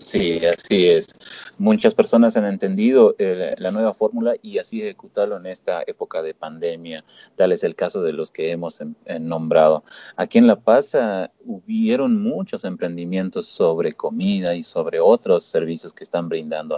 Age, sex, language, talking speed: 30-49, male, Spanish, 170 wpm